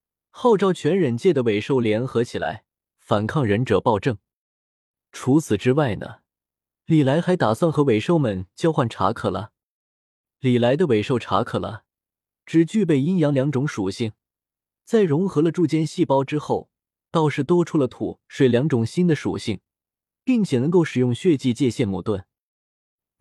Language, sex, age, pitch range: Chinese, male, 20-39, 110-155 Hz